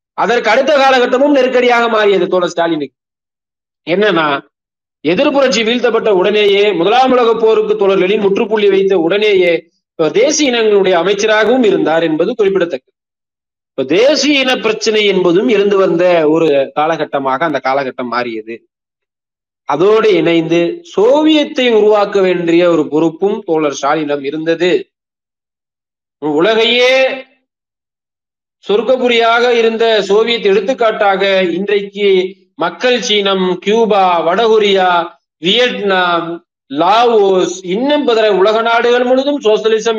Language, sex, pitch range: Tamil, male, 180-240 Hz